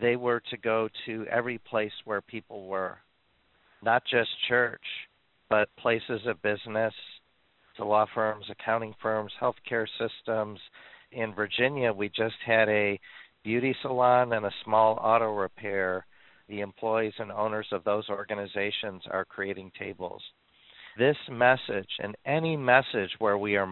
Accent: American